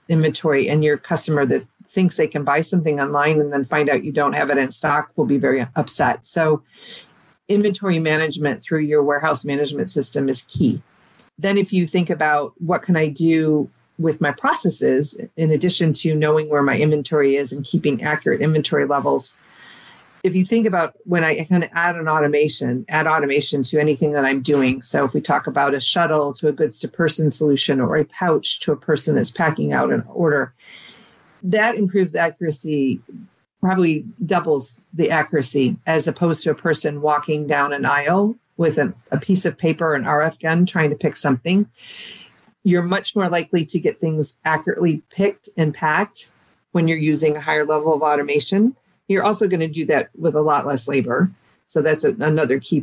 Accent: American